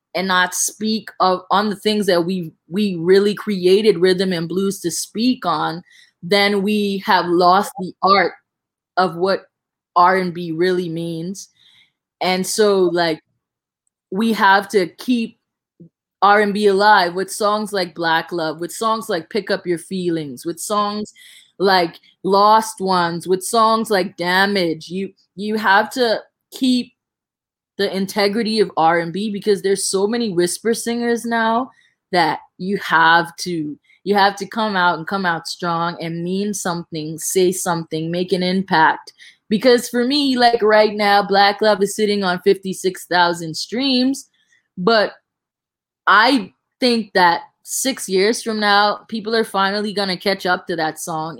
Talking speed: 145 wpm